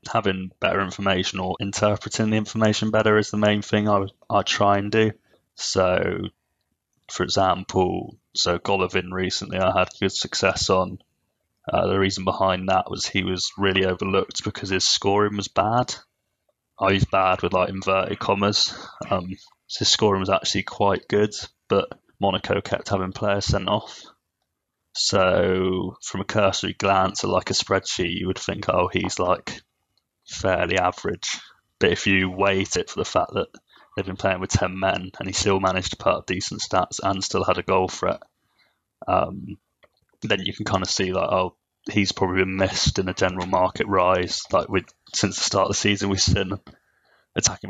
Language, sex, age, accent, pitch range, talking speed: English, male, 20-39, British, 95-100 Hz, 180 wpm